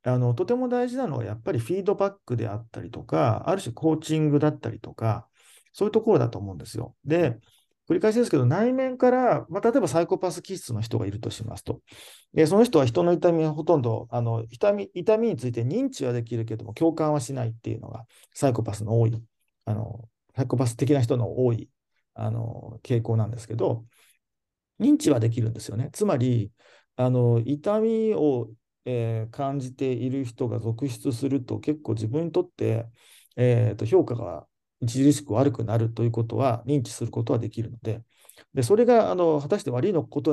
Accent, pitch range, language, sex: native, 115-160 Hz, Japanese, male